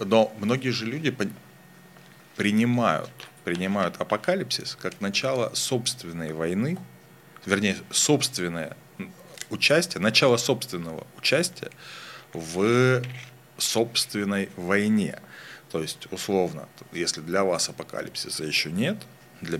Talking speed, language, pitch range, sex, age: 90 wpm, Russian, 90-125 Hz, male, 30-49